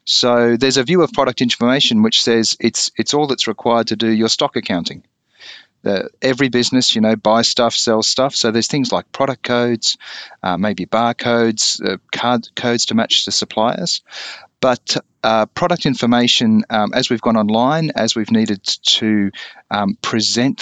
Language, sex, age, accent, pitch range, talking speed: English, male, 40-59, Australian, 105-125 Hz, 170 wpm